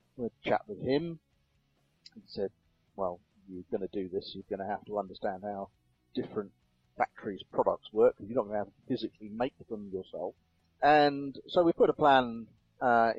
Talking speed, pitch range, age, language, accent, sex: 185 wpm, 95-125 Hz, 40-59, English, British, male